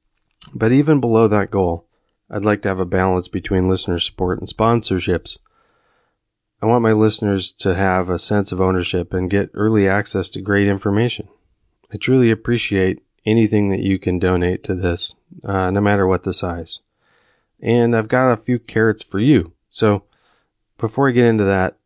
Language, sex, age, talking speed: English, male, 30-49, 175 wpm